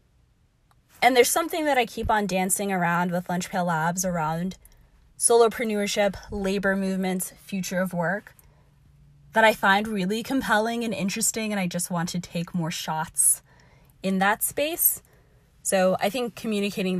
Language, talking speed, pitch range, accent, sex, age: English, 145 wpm, 180-220 Hz, American, female, 10-29